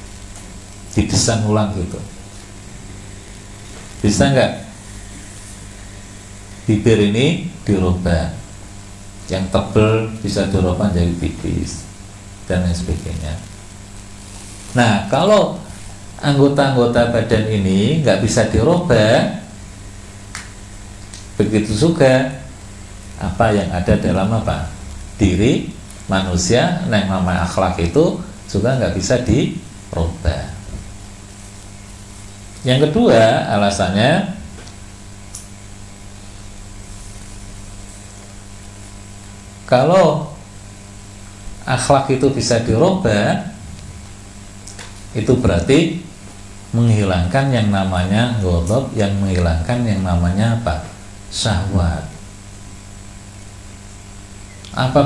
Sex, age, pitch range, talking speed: male, 50-69, 100-110 Hz, 70 wpm